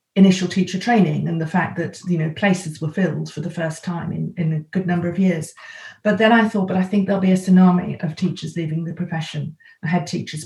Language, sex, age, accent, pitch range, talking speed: English, female, 40-59, British, 170-195 Hz, 235 wpm